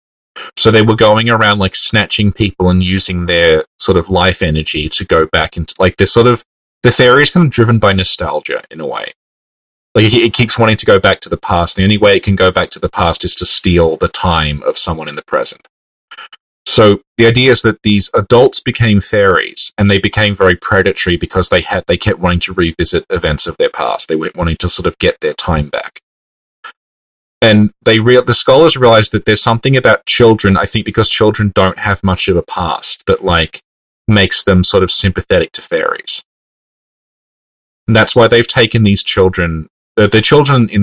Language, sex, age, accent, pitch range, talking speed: English, male, 30-49, Australian, 95-120 Hz, 210 wpm